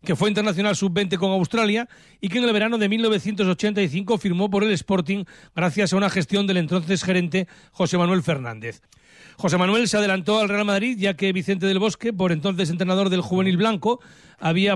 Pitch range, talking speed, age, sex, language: 180-210 Hz, 185 wpm, 40-59, male, Spanish